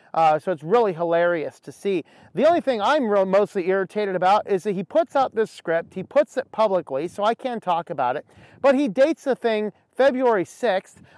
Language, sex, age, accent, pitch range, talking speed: English, male, 40-59, American, 155-235 Hz, 205 wpm